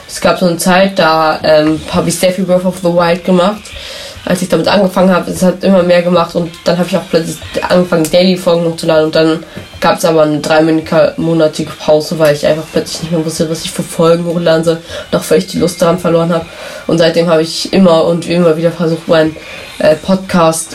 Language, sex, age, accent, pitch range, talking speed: German, female, 20-39, German, 155-180 Hz, 225 wpm